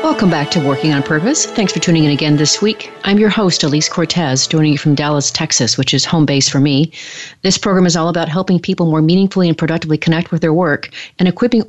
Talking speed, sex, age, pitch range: 235 wpm, female, 40-59, 140-170 Hz